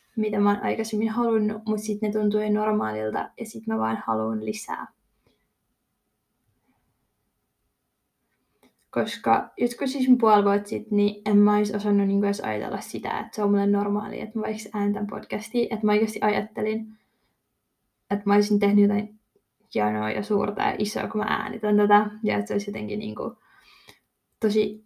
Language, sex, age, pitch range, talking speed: Finnish, female, 20-39, 200-215 Hz, 155 wpm